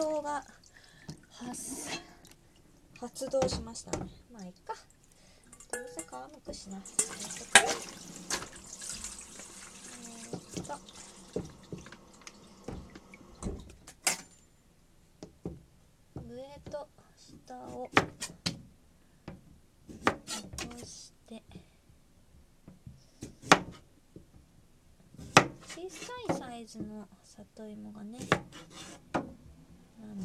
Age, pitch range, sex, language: 20-39, 180-240 Hz, female, Japanese